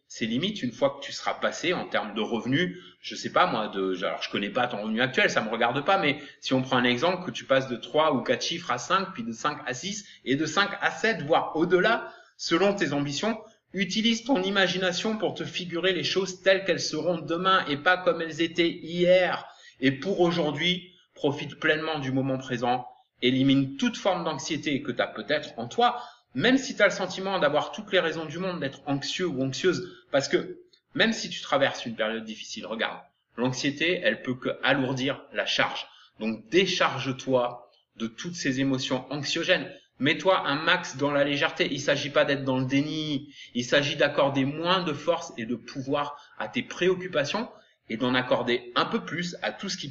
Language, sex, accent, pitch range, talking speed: French, male, French, 135-185 Hz, 205 wpm